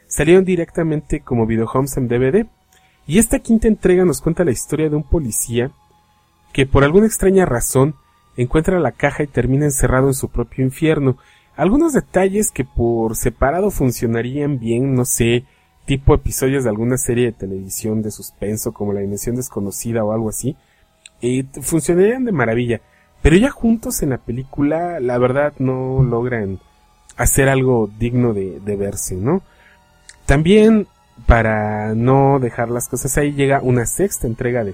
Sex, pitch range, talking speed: male, 110-160 Hz, 155 wpm